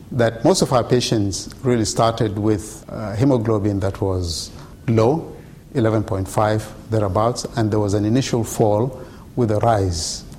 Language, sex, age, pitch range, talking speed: English, male, 50-69, 105-125 Hz, 140 wpm